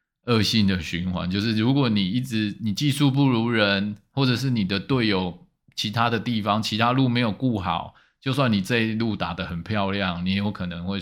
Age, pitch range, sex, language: 20-39, 95-120 Hz, male, Chinese